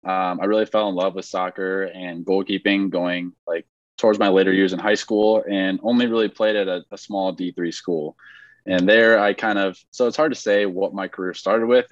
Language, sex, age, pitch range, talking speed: English, male, 20-39, 95-105 Hz, 220 wpm